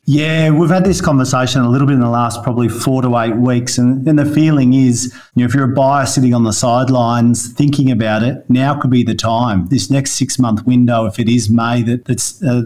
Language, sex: English, male